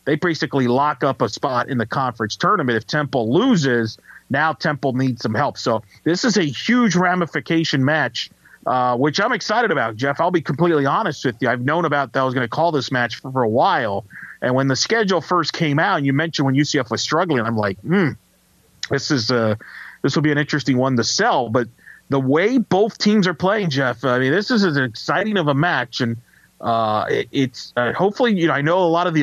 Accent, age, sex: American, 40-59, male